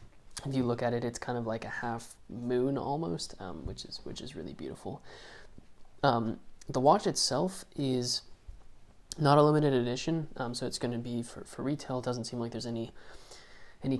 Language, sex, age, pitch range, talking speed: English, male, 20-39, 115-130 Hz, 195 wpm